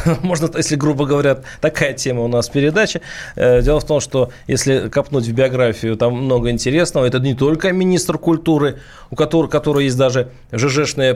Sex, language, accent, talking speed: male, Russian, native, 160 wpm